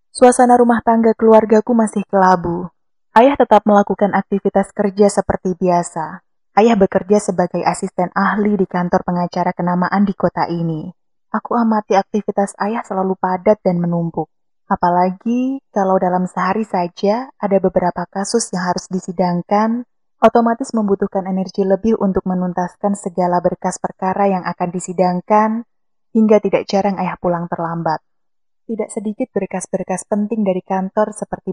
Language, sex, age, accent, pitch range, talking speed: Indonesian, female, 20-39, native, 180-210 Hz, 130 wpm